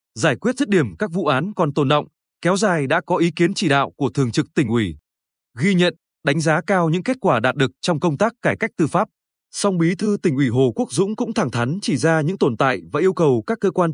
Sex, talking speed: male, 265 wpm